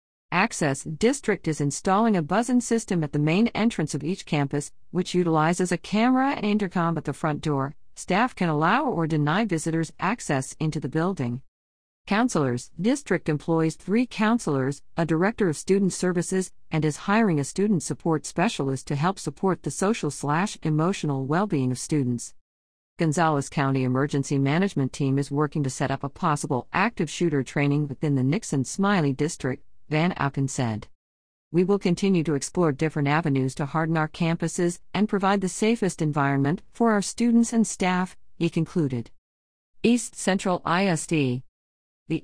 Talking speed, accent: 155 wpm, American